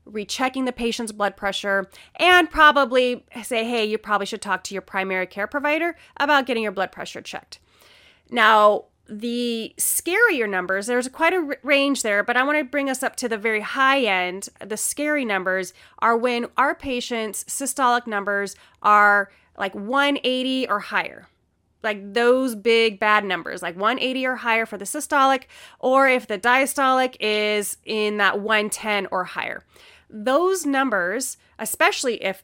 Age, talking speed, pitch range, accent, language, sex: 30-49, 155 wpm, 210-280 Hz, American, English, female